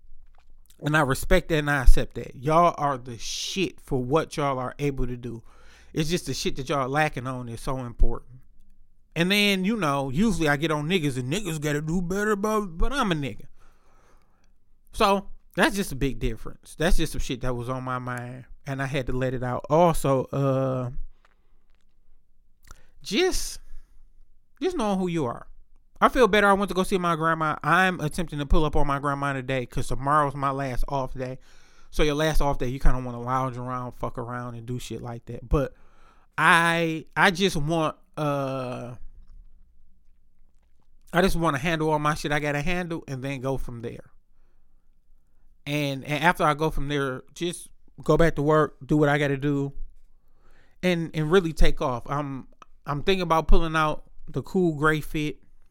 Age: 30-49